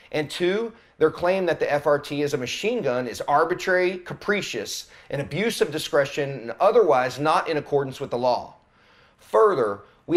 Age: 30-49